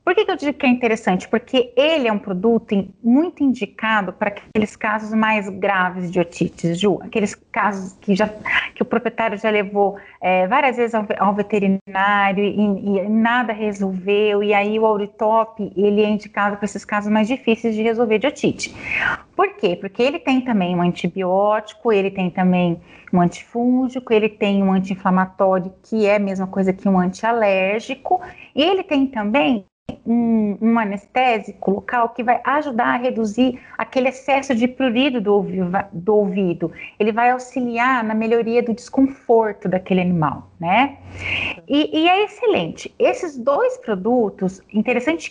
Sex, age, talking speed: female, 30-49, 155 wpm